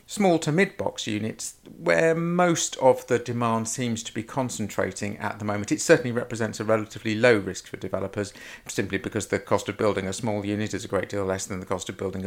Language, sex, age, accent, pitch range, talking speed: English, male, 50-69, British, 100-125 Hz, 215 wpm